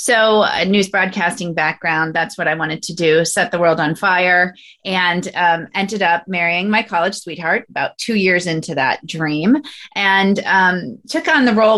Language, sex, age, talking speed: English, female, 30-49, 185 wpm